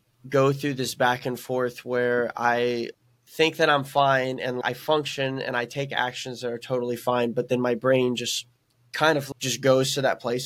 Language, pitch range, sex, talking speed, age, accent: English, 115-130 Hz, male, 200 wpm, 20-39, American